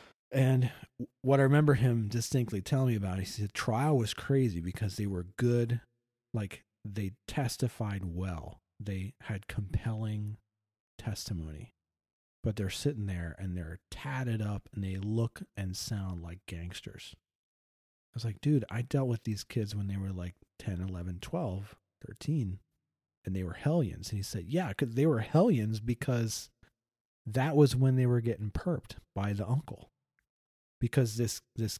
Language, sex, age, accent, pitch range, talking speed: English, male, 40-59, American, 95-125 Hz, 160 wpm